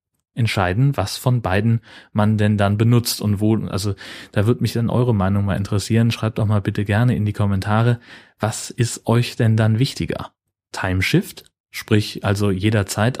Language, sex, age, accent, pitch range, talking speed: German, male, 30-49, German, 105-130 Hz, 170 wpm